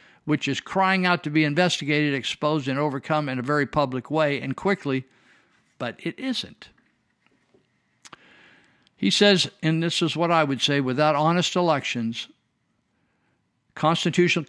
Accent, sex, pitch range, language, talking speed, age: American, male, 130-160 Hz, English, 135 wpm, 50-69